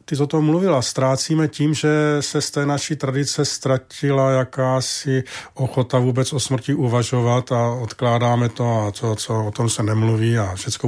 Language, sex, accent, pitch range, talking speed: Czech, male, native, 115-145 Hz, 180 wpm